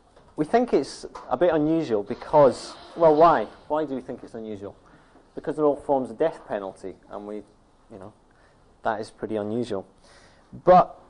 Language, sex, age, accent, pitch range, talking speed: English, male, 30-49, British, 110-150 Hz, 170 wpm